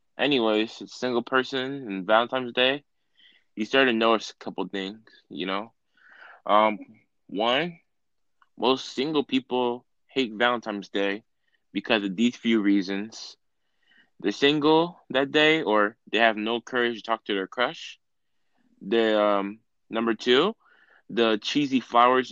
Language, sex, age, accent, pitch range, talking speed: English, male, 20-39, American, 105-130 Hz, 135 wpm